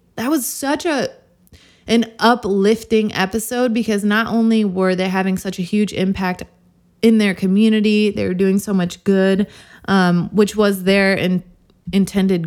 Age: 20-39